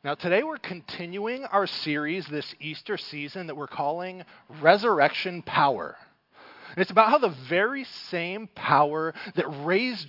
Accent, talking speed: American, 135 wpm